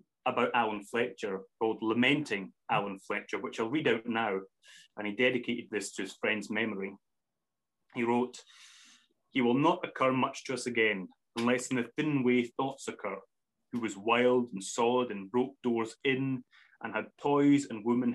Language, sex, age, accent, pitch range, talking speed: English, male, 30-49, British, 115-135 Hz, 170 wpm